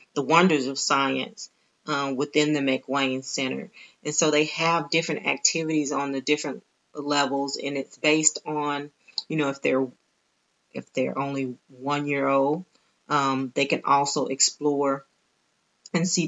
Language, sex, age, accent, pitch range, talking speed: English, female, 30-49, American, 135-155 Hz, 145 wpm